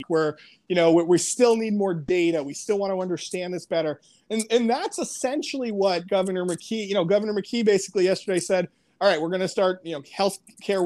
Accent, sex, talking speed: American, male, 215 wpm